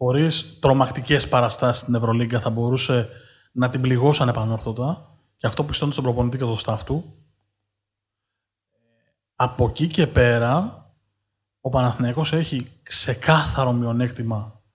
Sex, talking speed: male, 120 wpm